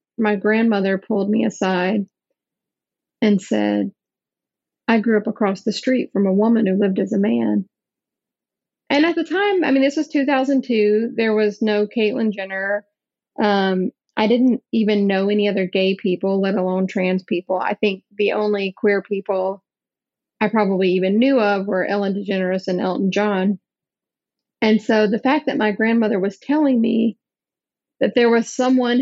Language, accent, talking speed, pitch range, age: English, American, 165 wpm, 195-235 Hz, 30-49